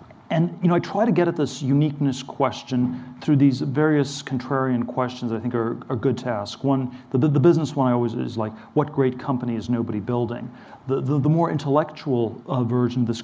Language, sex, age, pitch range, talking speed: English, male, 40-59, 120-140 Hz, 220 wpm